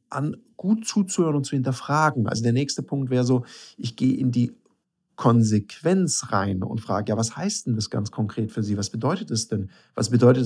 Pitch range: 110-135 Hz